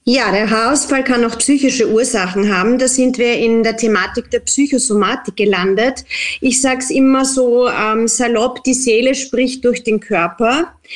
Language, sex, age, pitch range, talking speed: German, female, 40-59, 210-245 Hz, 165 wpm